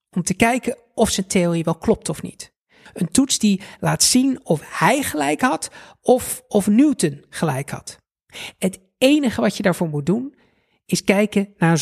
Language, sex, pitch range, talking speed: Dutch, male, 175-240 Hz, 180 wpm